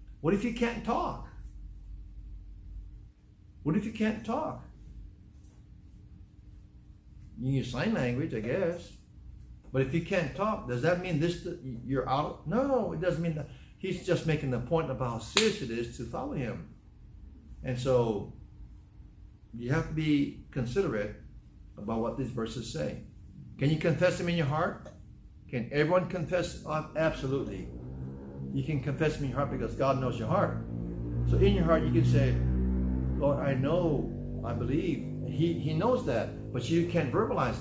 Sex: male